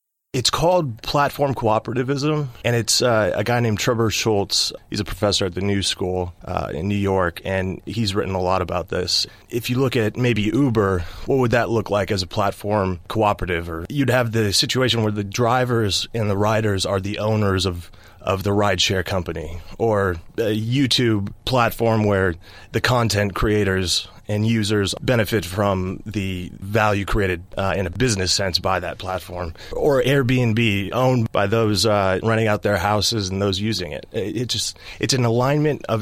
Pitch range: 95-115 Hz